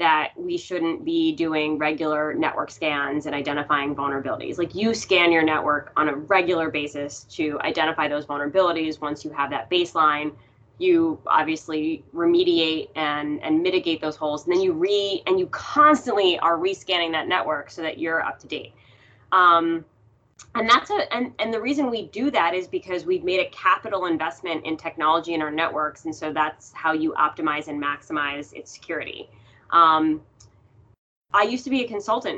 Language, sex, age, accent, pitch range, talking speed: English, female, 20-39, American, 150-190 Hz, 165 wpm